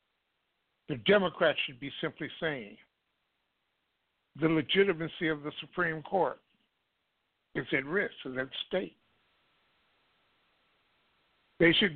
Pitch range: 130-170 Hz